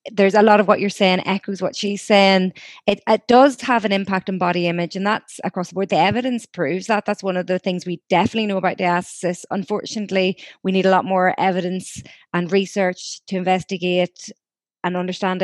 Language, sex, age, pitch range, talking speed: English, female, 20-39, 185-210 Hz, 200 wpm